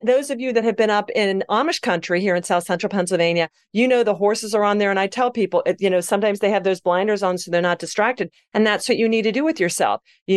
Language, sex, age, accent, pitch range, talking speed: English, female, 40-59, American, 180-230 Hz, 285 wpm